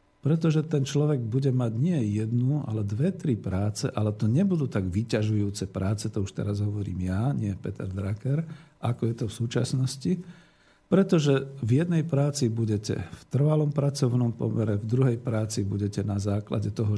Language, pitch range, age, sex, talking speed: Slovak, 105-135 Hz, 50-69, male, 165 wpm